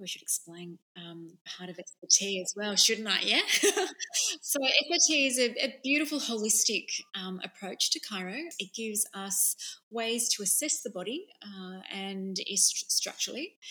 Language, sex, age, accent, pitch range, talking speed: English, female, 20-39, Australian, 185-215 Hz, 155 wpm